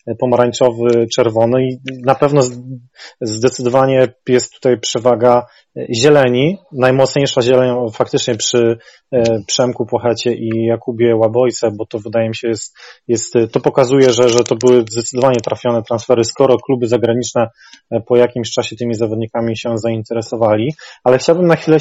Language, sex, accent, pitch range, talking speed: Polish, male, native, 120-135 Hz, 135 wpm